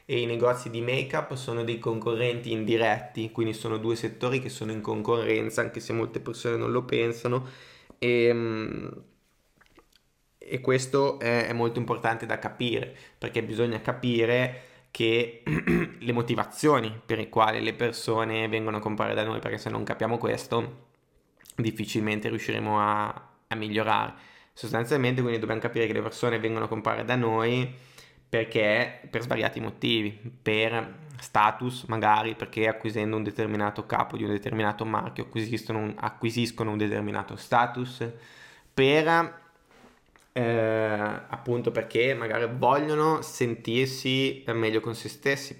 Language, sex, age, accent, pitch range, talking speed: Italian, male, 20-39, native, 110-120 Hz, 135 wpm